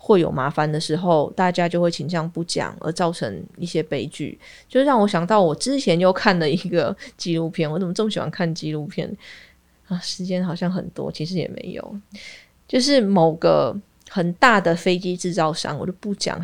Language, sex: Chinese, female